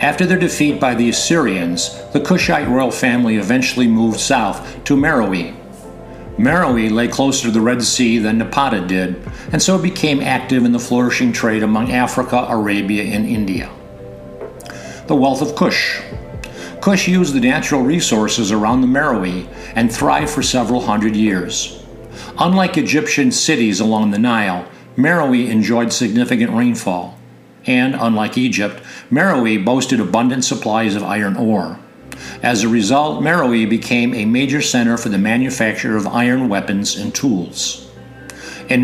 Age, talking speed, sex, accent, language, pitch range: 50-69, 145 wpm, male, American, English, 110-135 Hz